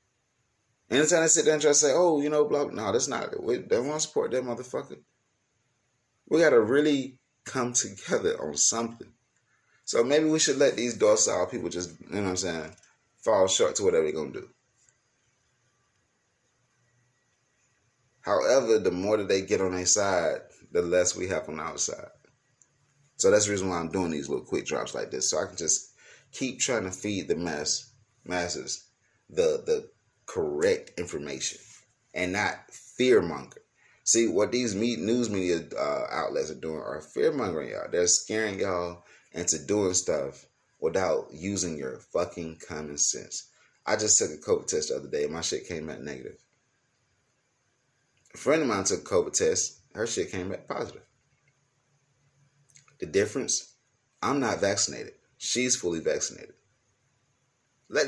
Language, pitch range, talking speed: English, 100-155 Hz, 165 wpm